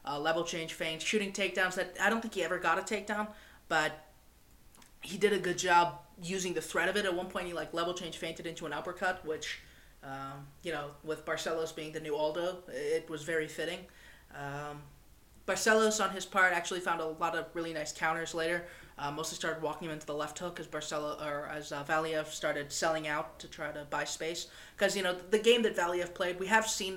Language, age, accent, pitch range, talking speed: English, 20-39, American, 155-180 Hz, 220 wpm